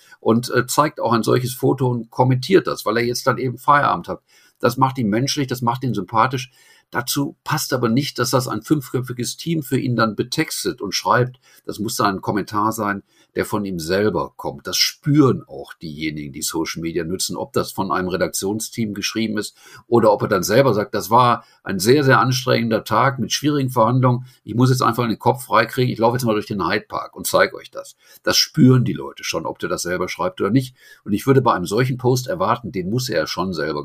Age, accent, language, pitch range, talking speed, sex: 50-69, German, German, 110-135 Hz, 220 wpm, male